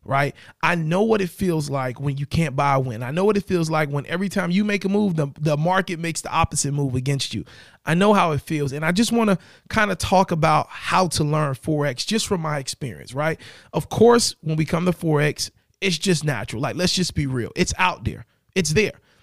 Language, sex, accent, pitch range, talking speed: English, male, American, 145-195 Hz, 245 wpm